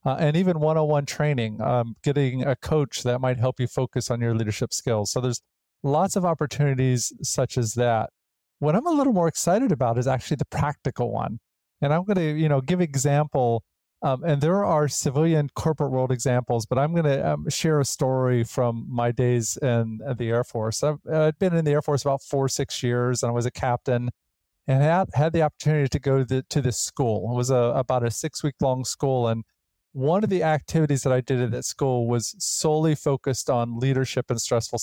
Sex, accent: male, American